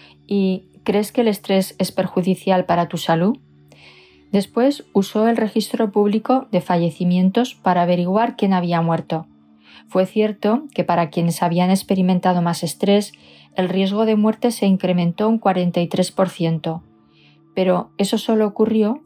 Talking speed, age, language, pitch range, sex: 135 wpm, 20-39, Spanish, 170-205 Hz, female